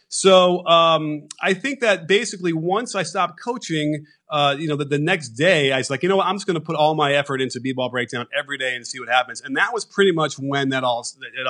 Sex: male